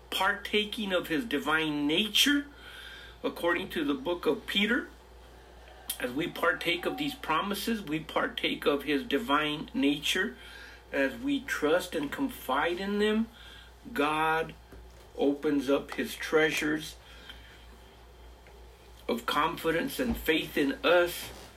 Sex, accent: male, American